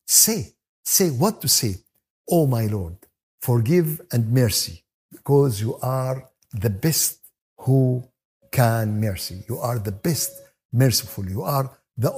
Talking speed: 135 wpm